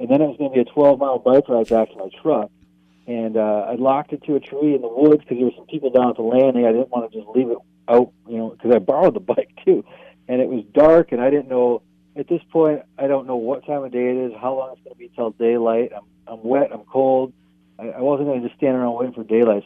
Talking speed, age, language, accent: 290 wpm, 40-59, English, American